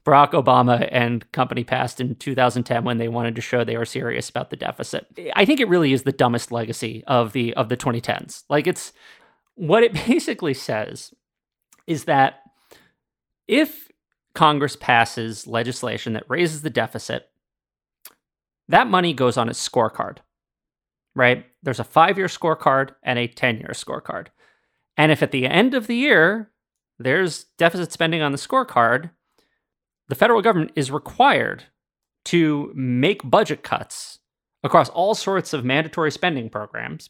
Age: 30-49